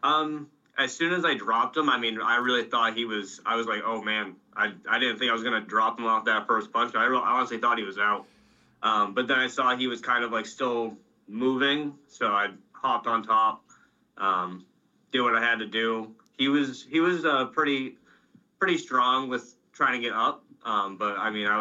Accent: American